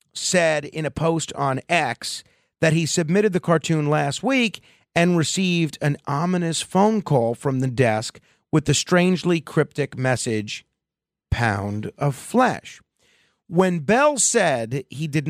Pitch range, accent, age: 130-175 Hz, American, 40-59